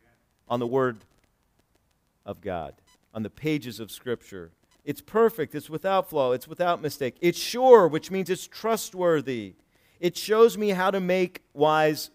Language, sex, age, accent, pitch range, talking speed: English, male, 40-59, American, 135-190 Hz, 155 wpm